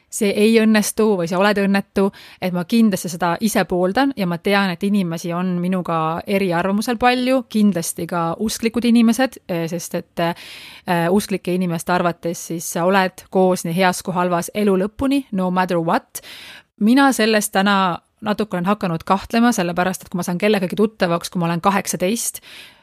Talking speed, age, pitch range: 160 wpm, 30-49, 175-215 Hz